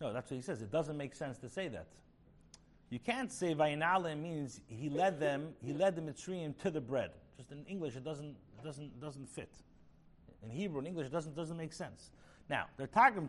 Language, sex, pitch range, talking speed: English, male, 135-185 Hz, 210 wpm